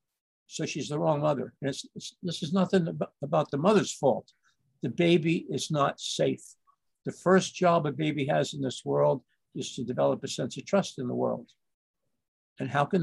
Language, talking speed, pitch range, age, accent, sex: English, 195 wpm, 135-180 Hz, 60-79, American, male